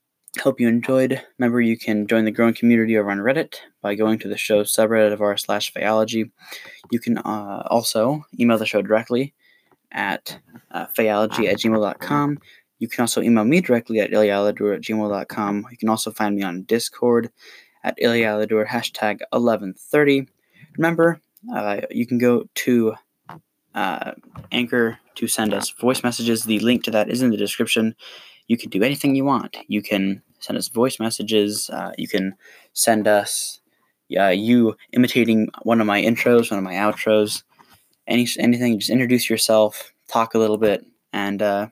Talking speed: 170 wpm